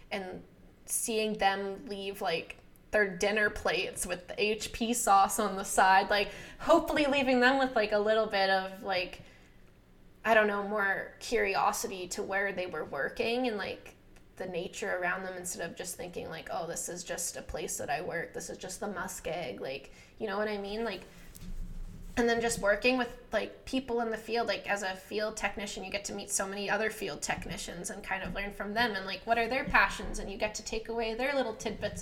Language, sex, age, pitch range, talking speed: English, female, 10-29, 200-235 Hz, 210 wpm